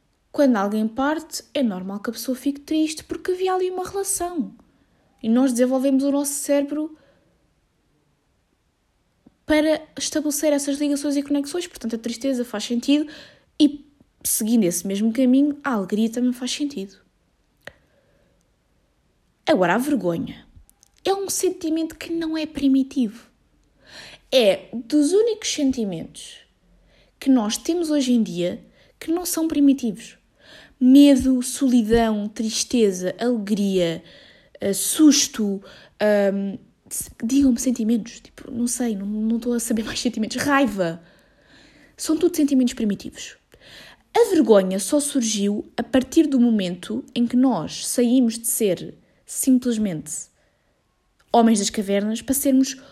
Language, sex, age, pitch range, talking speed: Portuguese, female, 20-39, 225-295 Hz, 125 wpm